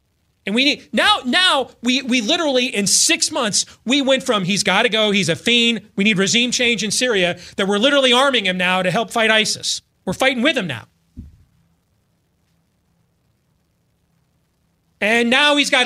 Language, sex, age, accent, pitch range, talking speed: English, male, 30-49, American, 170-250 Hz, 175 wpm